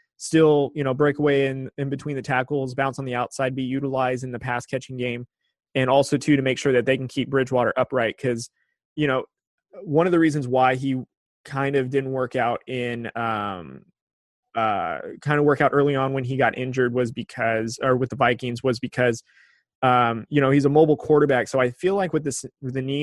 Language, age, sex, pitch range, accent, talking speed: English, 20-39, male, 125-140 Hz, American, 220 wpm